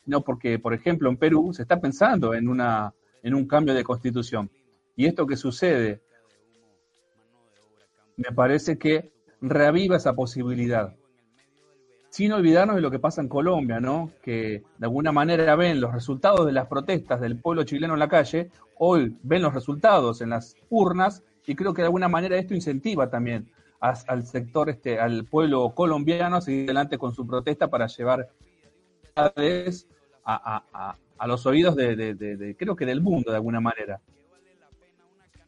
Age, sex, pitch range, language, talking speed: 40-59, male, 115-150 Hz, Spanish, 175 wpm